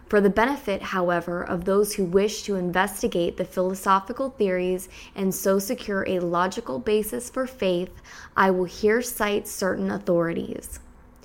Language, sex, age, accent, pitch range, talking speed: English, female, 20-39, American, 185-220 Hz, 145 wpm